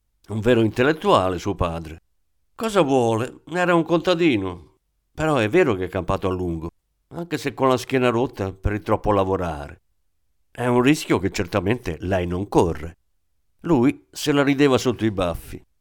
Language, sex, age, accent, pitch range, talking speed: Italian, male, 50-69, native, 90-125 Hz, 165 wpm